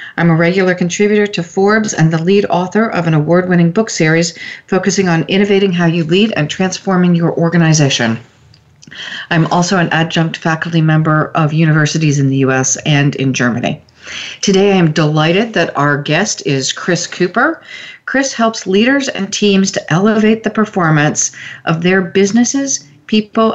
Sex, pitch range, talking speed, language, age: female, 155-195 Hz, 160 wpm, English, 40-59